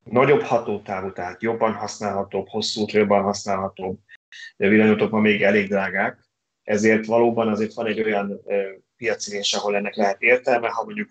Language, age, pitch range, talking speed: Hungarian, 30-49, 100-125 Hz, 150 wpm